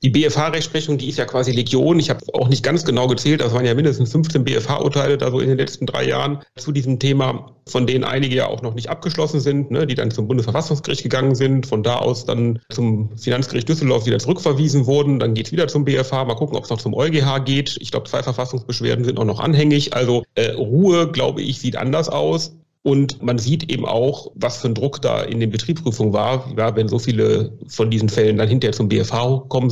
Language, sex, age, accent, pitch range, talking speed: German, male, 40-59, German, 115-140 Hz, 225 wpm